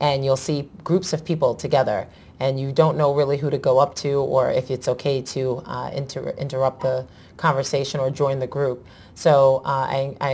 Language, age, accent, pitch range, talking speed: English, 30-49, American, 135-160 Hz, 190 wpm